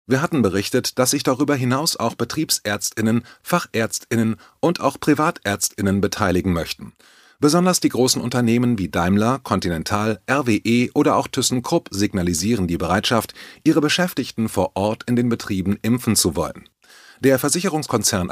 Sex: male